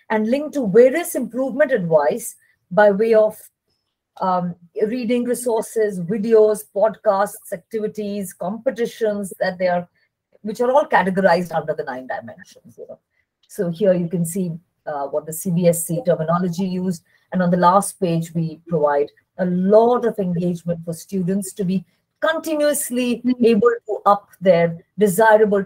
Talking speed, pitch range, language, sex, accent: 145 wpm, 170-230 Hz, English, female, Indian